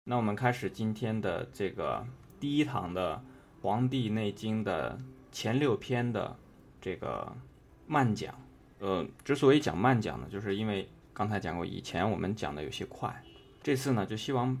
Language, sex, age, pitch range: Chinese, male, 20-39, 100-130 Hz